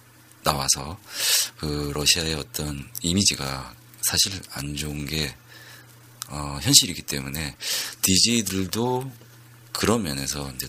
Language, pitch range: Korean, 70-85 Hz